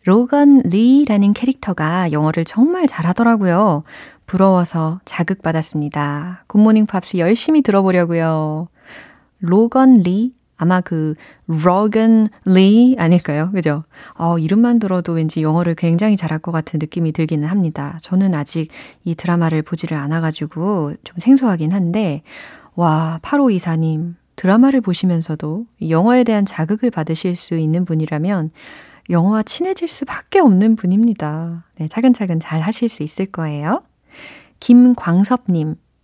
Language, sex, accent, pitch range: Korean, female, native, 160-215 Hz